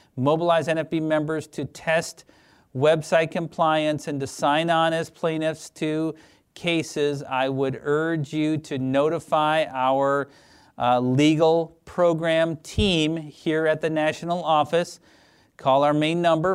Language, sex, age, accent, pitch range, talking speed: English, male, 40-59, American, 130-165 Hz, 125 wpm